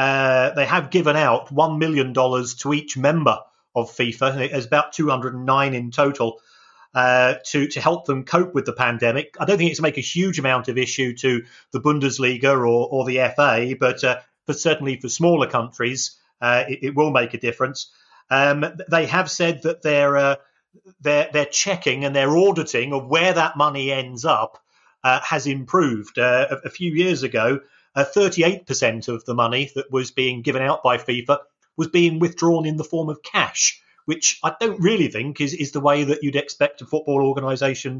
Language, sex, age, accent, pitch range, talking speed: English, male, 40-59, British, 130-165 Hz, 190 wpm